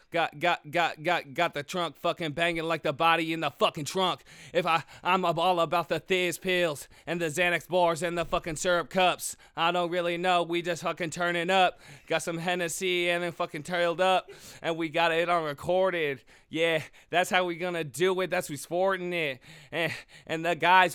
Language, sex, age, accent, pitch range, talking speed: English, male, 20-39, American, 160-175 Hz, 200 wpm